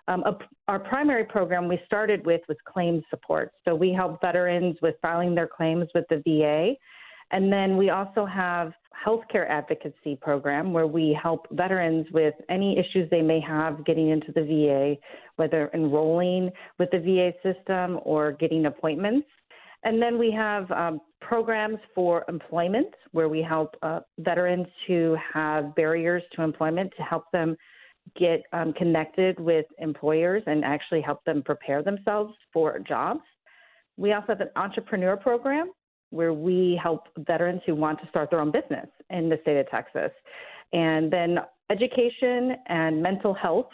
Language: English